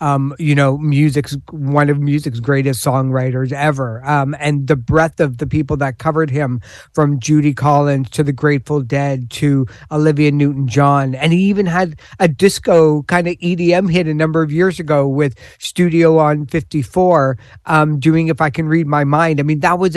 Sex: male